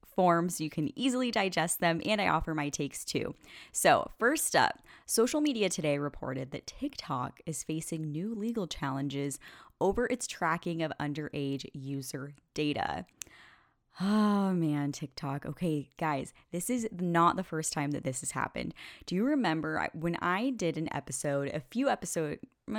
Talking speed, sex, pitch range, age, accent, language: 155 wpm, female, 150-205 Hz, 10-29, American, English